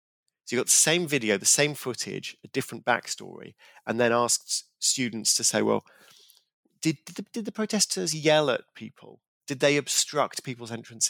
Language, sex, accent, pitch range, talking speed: English, male, British, 110-140 Hz, 180 wpm